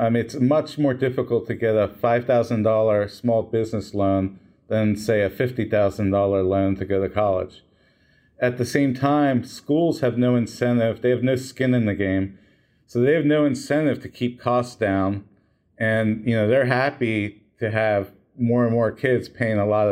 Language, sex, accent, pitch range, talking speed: English, male, American, 105-125 Hz, 180 wpm